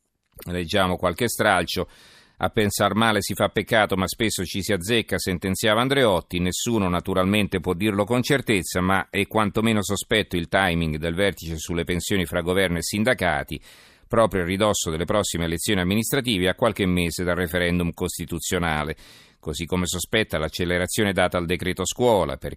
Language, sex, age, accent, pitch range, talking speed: Italian, male, 40-59, native, 85-100 Hz, 155 wpm